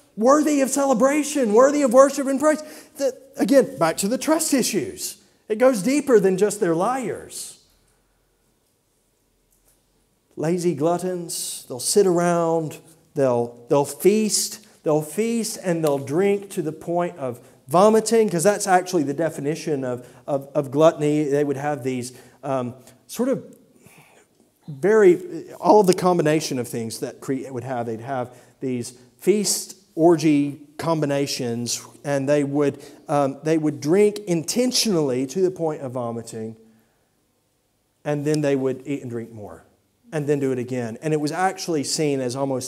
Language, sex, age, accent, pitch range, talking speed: English, male, 40-59, American, 140-220 Hz, 150 wpm